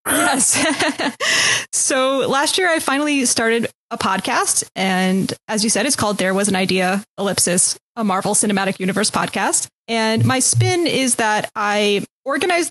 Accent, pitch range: American, 195-230 Hz